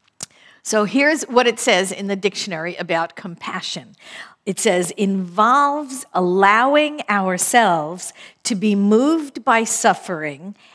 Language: English